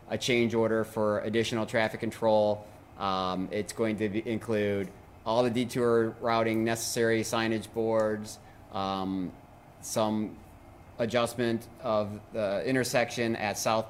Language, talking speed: English, 120 wpm